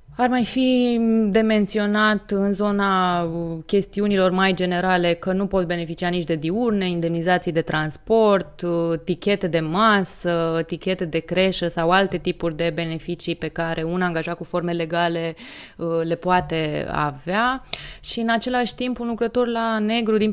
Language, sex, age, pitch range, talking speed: Romanian, female, 20-39, 165-195 Hz, 150 wpm